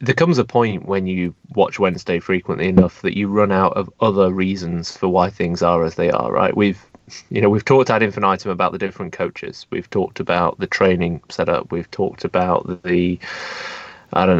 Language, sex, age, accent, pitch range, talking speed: English, male, 30-49, British, 95-120 Hz, 200 wpm